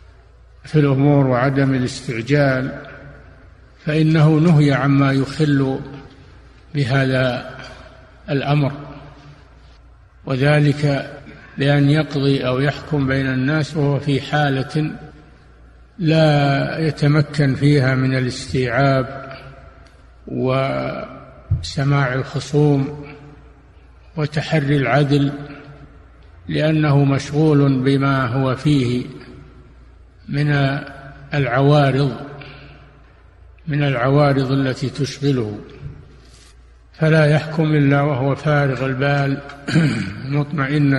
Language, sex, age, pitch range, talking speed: Arabic, male, 50-69, 130-145 Hz, 70 wpm